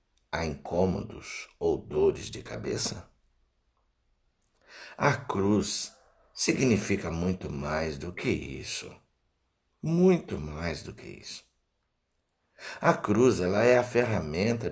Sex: male